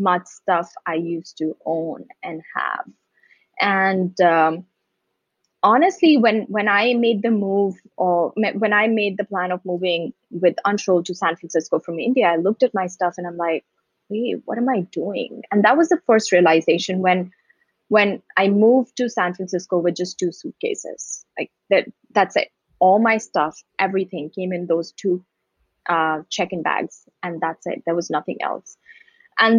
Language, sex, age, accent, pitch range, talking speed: English, female, 20-39, Indian, 175-225 Hz, 175 wpm